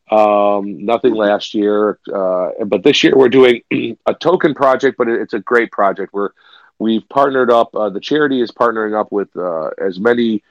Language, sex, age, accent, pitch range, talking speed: English, male, 40-59, American, 100-115 Hz, 190 wpm